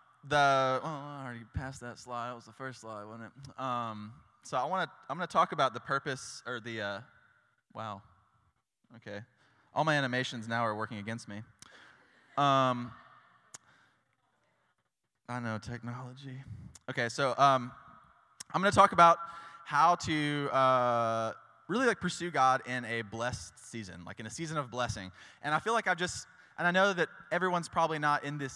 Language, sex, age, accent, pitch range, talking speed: English, male, 20-39, American, 115-165 Hz, 175 wpm